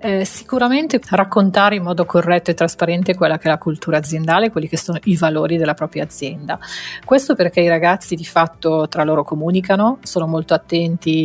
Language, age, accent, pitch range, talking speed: Italian, 30-49, native, 165-190 Hz, 180 wpm